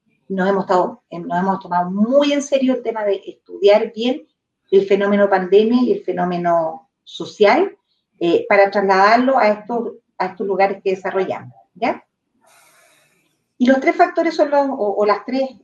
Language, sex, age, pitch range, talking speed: Spanish, female, 40-59, 190-240 Hz, 160 wpm